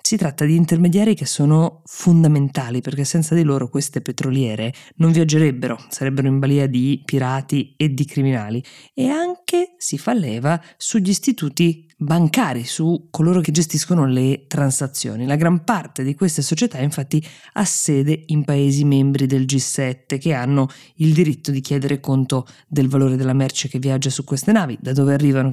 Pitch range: 135-170 Hz